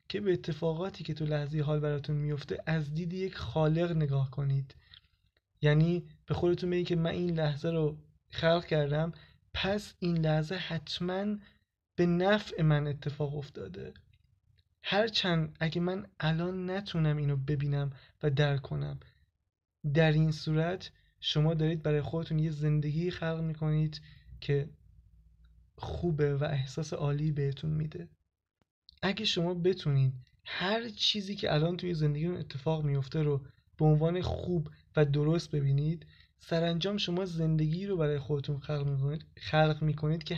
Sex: male